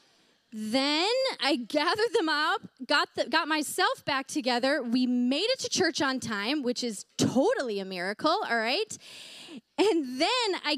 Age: 20-39